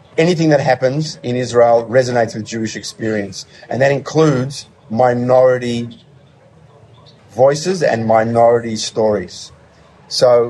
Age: 30-49